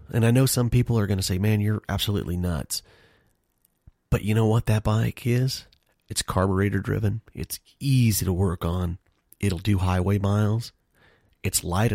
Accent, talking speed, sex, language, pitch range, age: American, 170 wpm, male, English, 90-110 Hz, 30-49